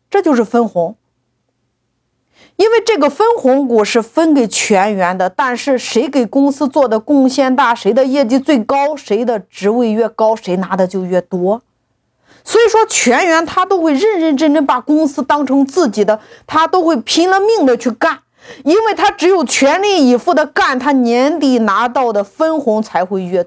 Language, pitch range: Chinese, 185-295 Hz